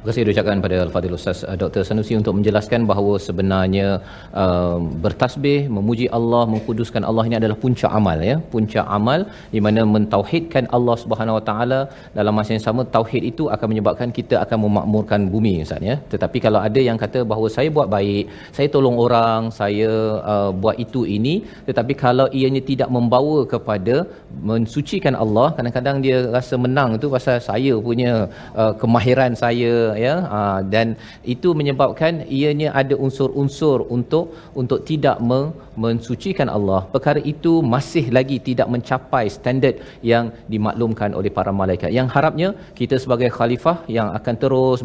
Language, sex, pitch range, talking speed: Malayalam, male, 110-135 Hz, 155 wpm